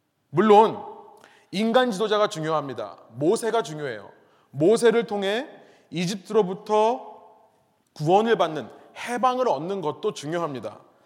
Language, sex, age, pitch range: Korean, male, 30-49, 170-235 Hz